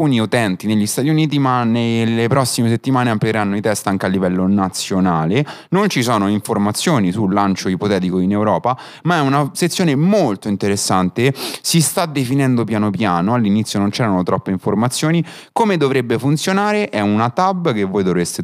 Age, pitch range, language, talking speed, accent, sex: 30-49, 95-140 Hz, Italian, 165 wpm, native, male